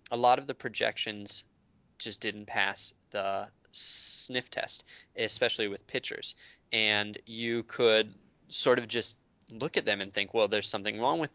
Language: English